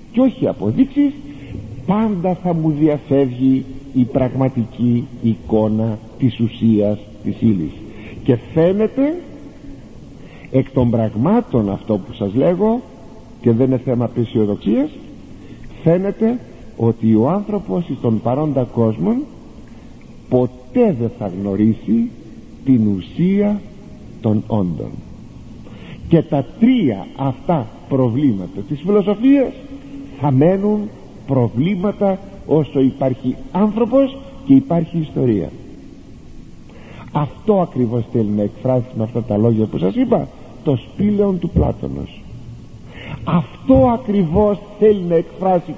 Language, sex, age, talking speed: Greek, male, 60-79, 105 wpm